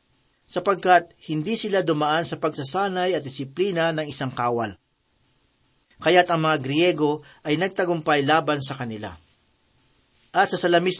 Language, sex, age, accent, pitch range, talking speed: Filipino, male, 40-59, native, 140-180 Hz, 125 wpm